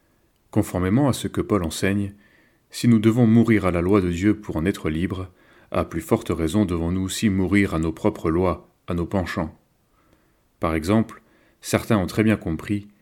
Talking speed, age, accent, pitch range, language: 185 wpm, 30-49, French, 85-105 Hz, French